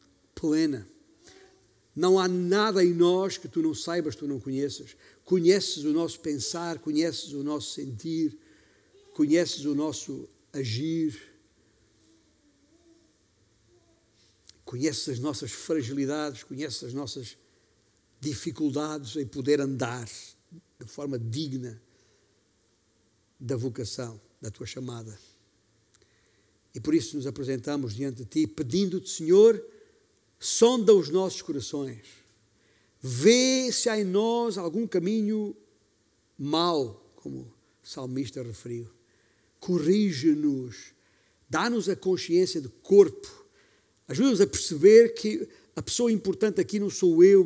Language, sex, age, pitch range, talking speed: Portuguese, male, 60-79, 120-185 Hz, 110 wpm